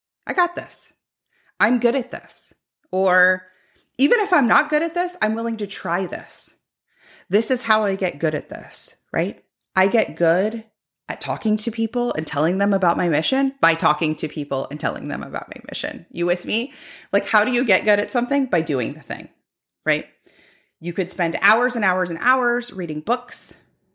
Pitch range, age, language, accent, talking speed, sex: 170-240 Hz, 30-49, English, American, 195 wpm, female